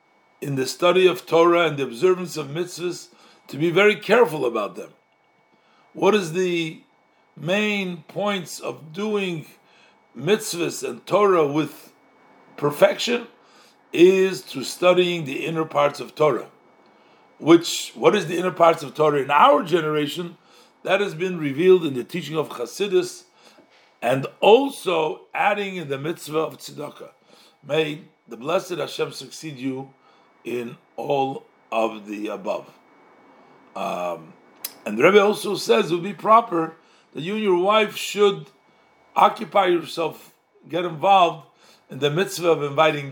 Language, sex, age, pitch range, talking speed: English, male, 50-69, 145-190 Hz, 140 wpm